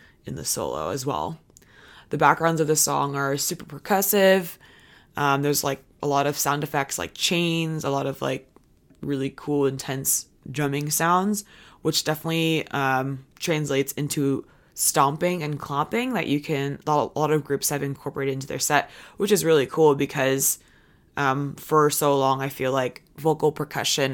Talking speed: 165 wpm